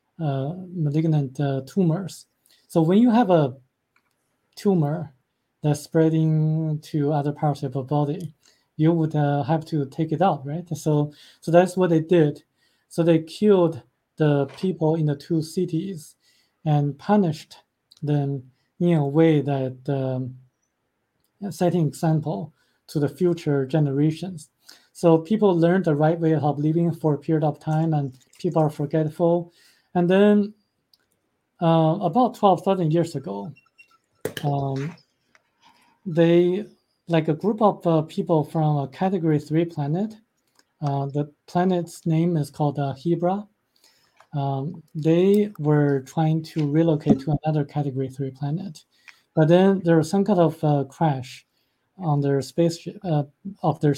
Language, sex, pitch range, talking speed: English, male, 145-175 Hz, 140 wpm